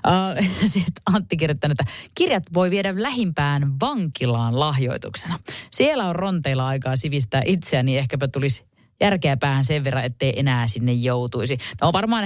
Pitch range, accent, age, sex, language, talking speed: 125-185 Hz, native, 30-49, female, Finnish, 140 wpm